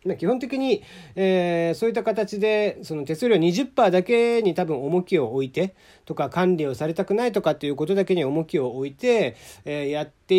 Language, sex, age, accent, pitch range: Japanese, male, 40-59, native, 140-220 Hz